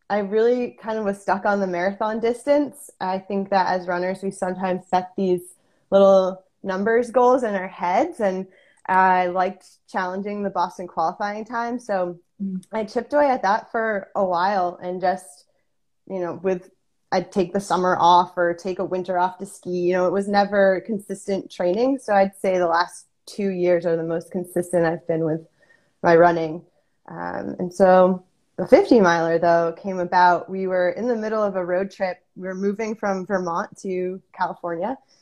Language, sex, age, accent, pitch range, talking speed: English, female, 20-39, American, 180-205 Hz, 180 wpm